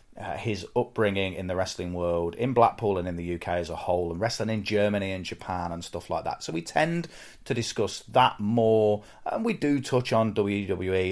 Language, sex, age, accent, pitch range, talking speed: English, male, 30-49, British, 90-115 Hz, 210 wpm